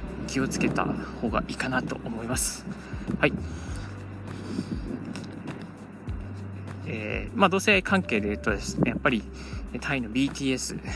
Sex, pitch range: male, 100-145 Hz